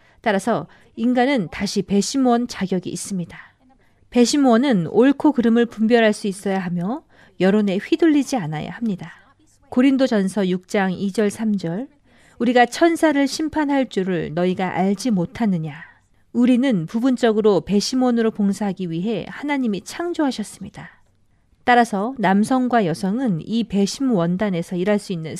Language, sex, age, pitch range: Korean, female, 40-59, 185-250 Hz